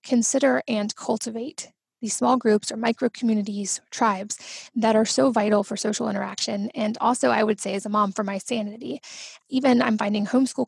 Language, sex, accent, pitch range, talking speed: English, female, American, 215-245 Hz, 180 wpm